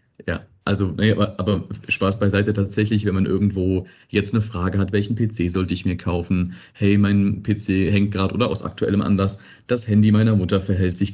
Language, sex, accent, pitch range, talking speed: German, male, German, 95-110 Hz, 190 wpm